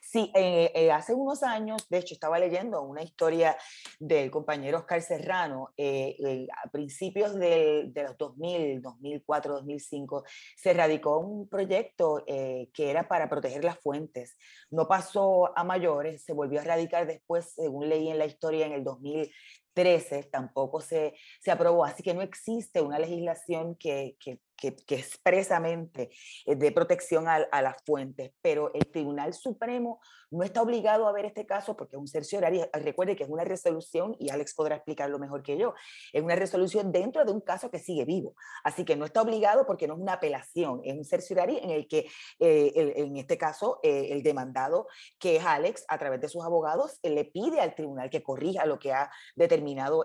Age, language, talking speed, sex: 30-49, English, 185 wpm, female